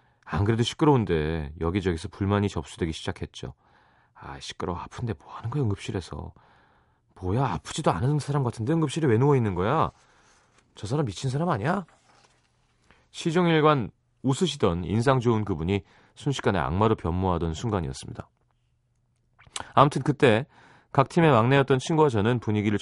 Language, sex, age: Korean, male, 30-49